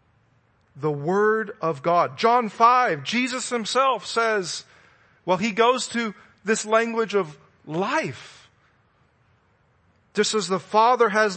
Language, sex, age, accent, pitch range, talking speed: English, male, 40-59, American, 150-225 Hz, 115 wpm